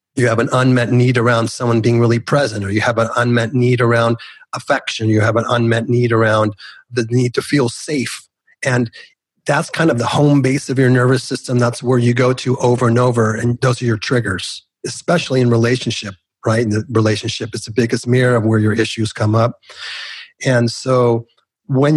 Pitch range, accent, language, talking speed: 115-130 Hz, American, English, 200 wpm